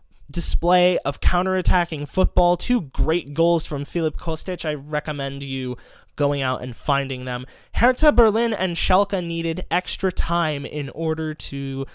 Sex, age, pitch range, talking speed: male, 20-39, 140-180 Hz, 140 wpm